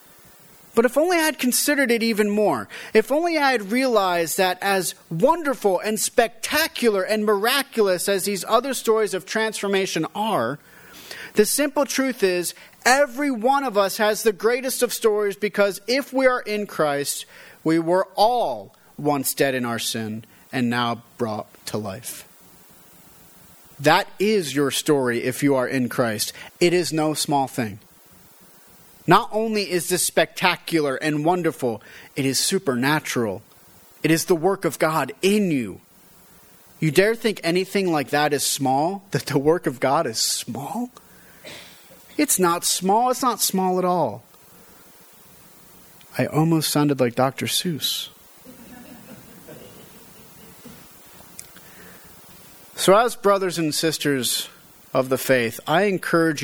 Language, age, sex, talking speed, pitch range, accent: English, 30-49, male, 140 wpm, 145-215 Hz, American